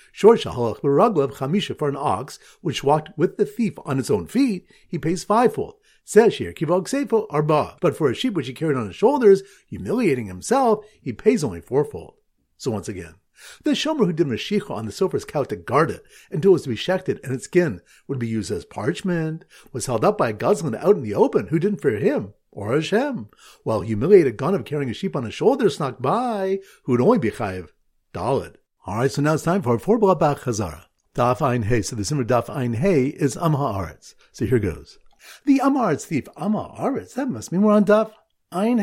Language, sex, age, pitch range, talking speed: English, male, 50-69, 130-210 Hz, 210 wpm